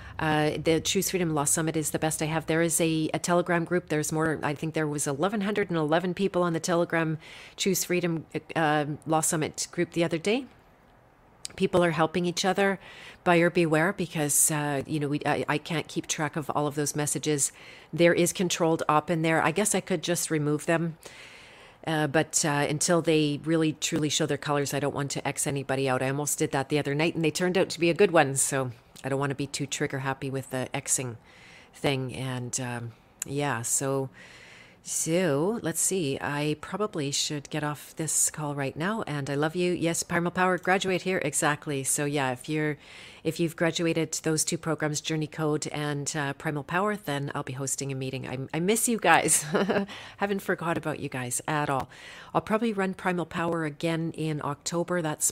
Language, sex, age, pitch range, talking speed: English, female, 40-59, 145-170 Hz, 200 wpm